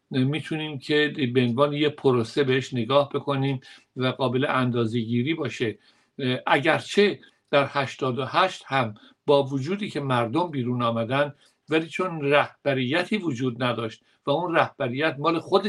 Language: Persian